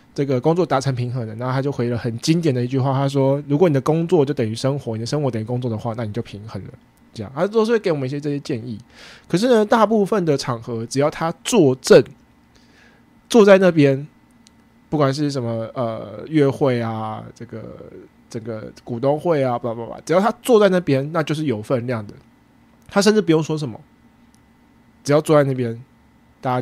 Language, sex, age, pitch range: English, male, 20-39, 120-160 Hz